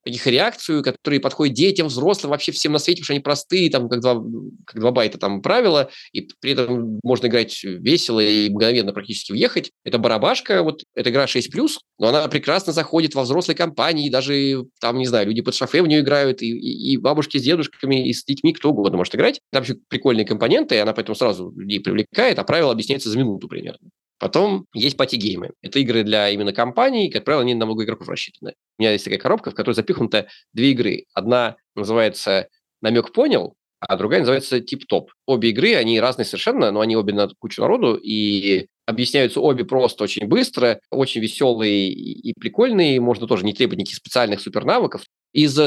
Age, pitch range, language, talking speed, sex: 20-39, 115-150 Hz, Russian, 195 wpm, male